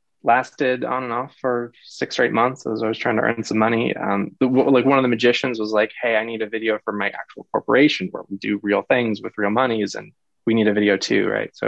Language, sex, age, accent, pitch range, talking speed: English, male, 20-39, American, 105-130 Hz, 255 wpm